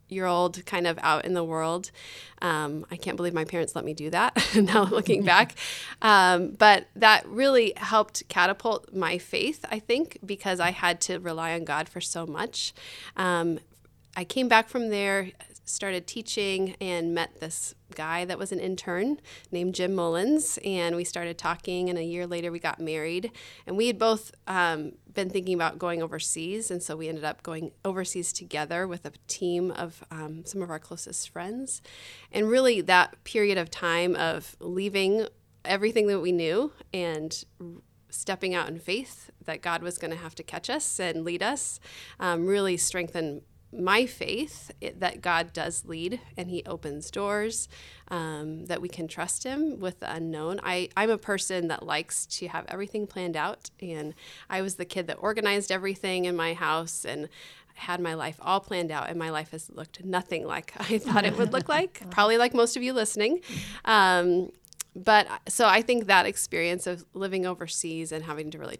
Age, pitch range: 30-49, 165-205 Hz